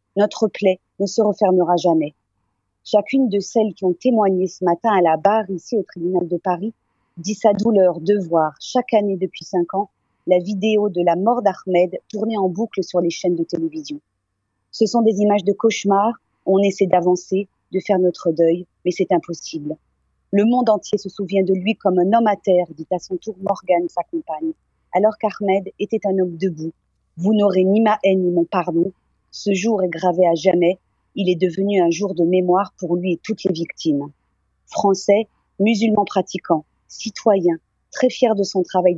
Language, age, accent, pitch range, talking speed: French, 40-59, French, 175-205 Hz, 190 wpm